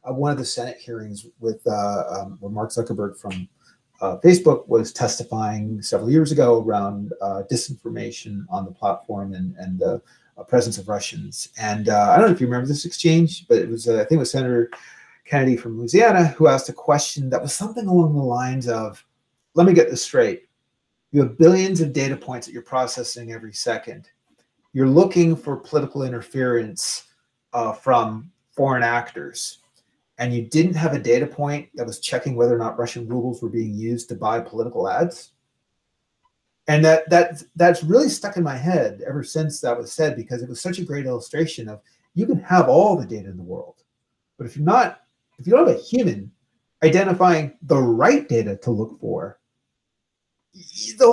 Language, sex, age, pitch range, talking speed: English, male, 30-49, 115-170 Hz, 190 wpm